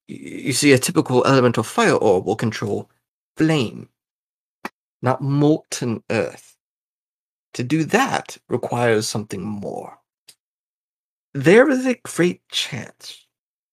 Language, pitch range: English, 120-180 Hz